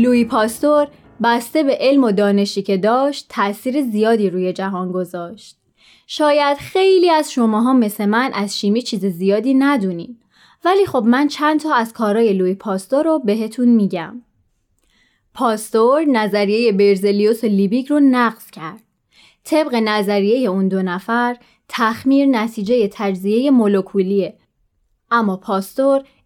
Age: 20-39